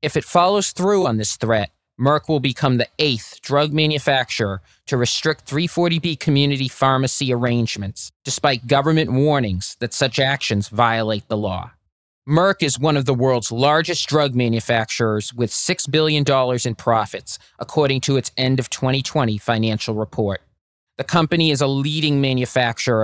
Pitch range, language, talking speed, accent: 110-145 Hz, English, 150 wpm, American